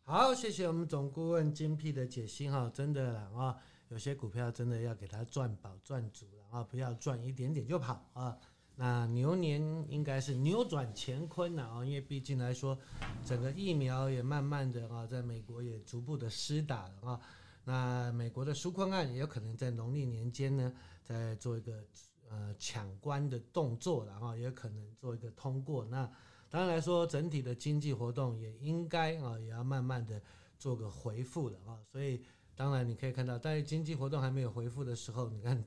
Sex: male